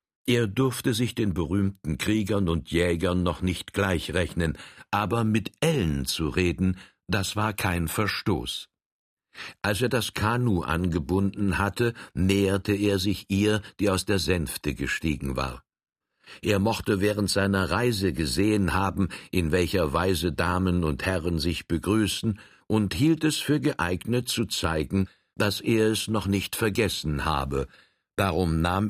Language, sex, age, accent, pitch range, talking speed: German, male, 60-79, German, 85-110 Hz, 140 wpm